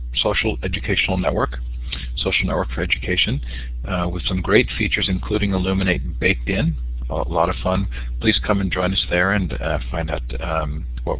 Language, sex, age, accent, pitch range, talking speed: English, male, 40-59, American, 65-95 Hz, 170 wpm